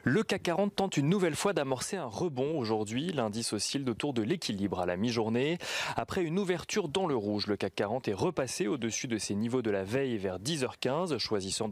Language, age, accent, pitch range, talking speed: French, 30-49, French, 115-155 Hz, 205 wpm